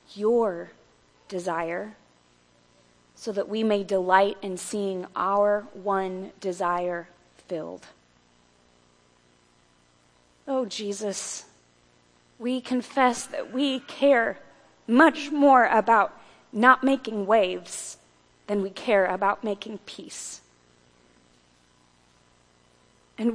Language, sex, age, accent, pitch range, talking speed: English, female, 30-49, American, 155-260 Hz, 85 wpm